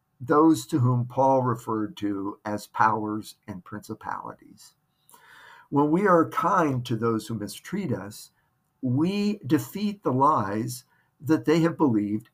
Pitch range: 110-155 Hz